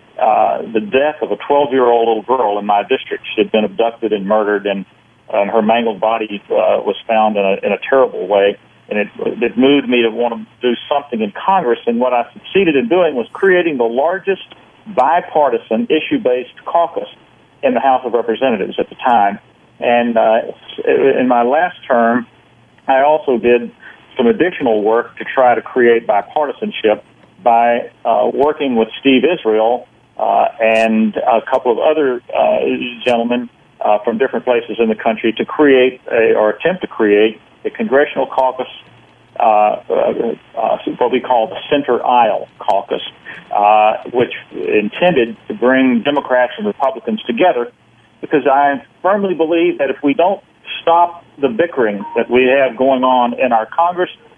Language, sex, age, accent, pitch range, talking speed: English, male, 50-69, American, 110-135 Hz, 170 wpm